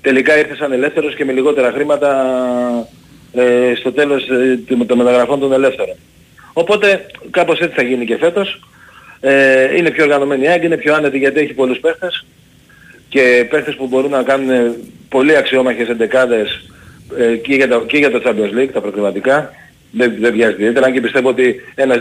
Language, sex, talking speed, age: Greek, male, 175 wpm, 40-59